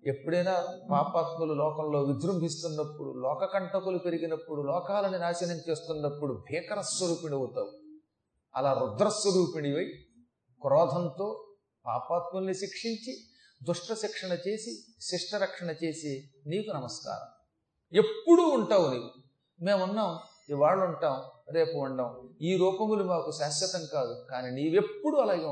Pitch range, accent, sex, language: 150-225 Hz, native, male, Telugu